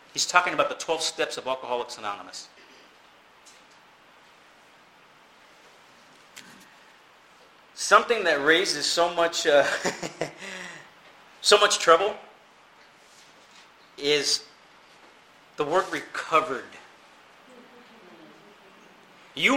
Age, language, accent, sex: 40-59, English, American, male